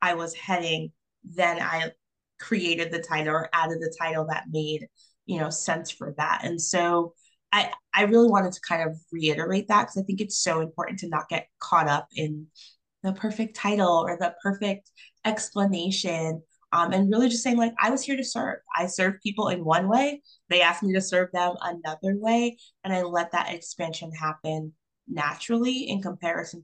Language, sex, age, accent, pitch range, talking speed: English, female, 20-39, American, 160-195 Hz, 185 wpm